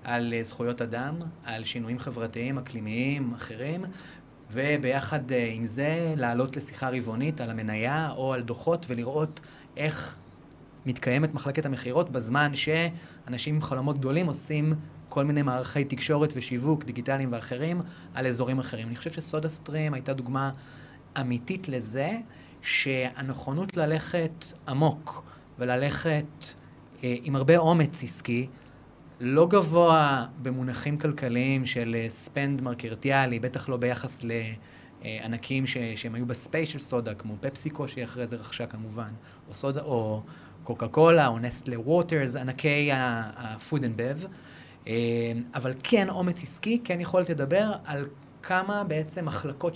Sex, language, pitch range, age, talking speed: male, Hebrew, 120-155 Hz, 30-49, 125 wpm